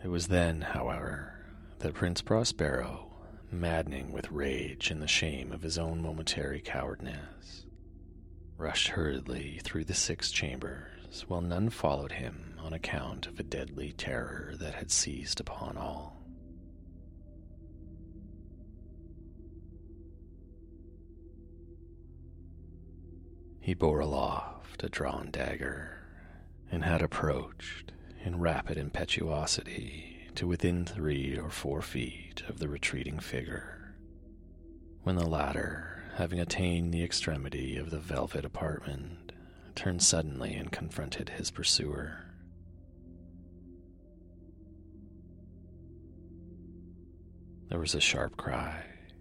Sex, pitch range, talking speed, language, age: male, 80-85 Hz, 100 wpm, English, 40-59